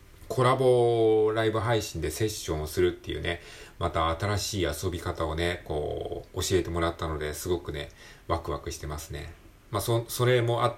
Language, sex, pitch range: Japanese, male, 85-115 Hz